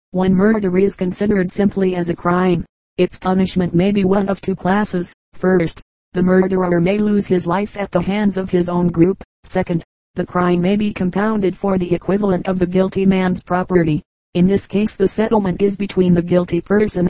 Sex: female